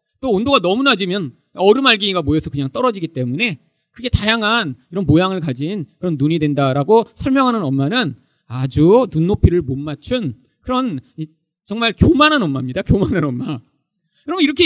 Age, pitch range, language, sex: 40-59, 140-240 Hz, Korean, male